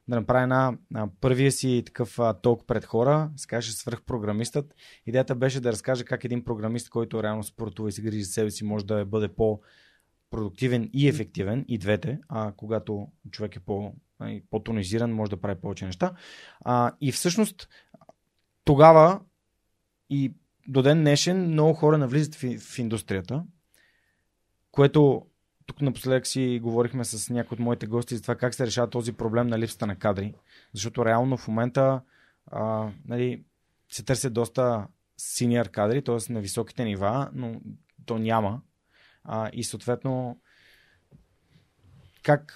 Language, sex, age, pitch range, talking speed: Bulgarian, male, 30-49, 110-135 Hz, 150 wpm